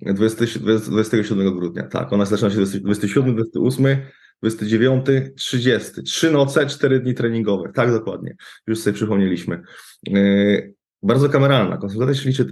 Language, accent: Polish, native